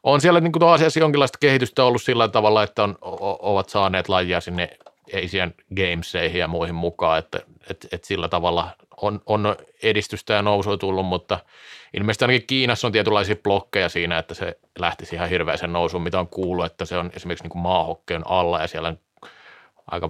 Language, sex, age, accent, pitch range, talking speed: Finnish, male, 30-49, native, 90-110 Hz, 180 wpm